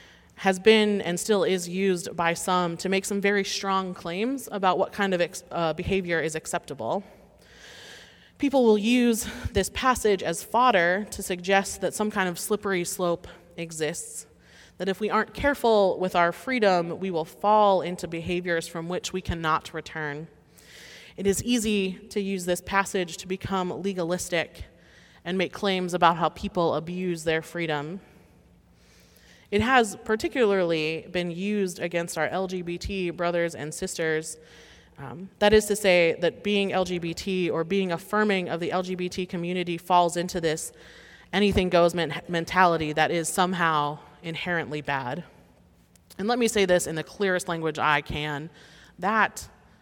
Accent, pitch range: American, 165-195 Hz